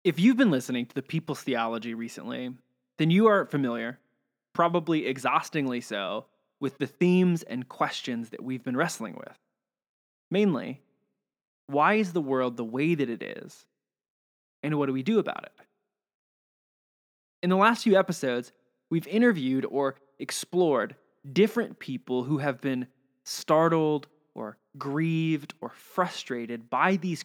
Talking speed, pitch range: 140 wpm, 130-195 Hz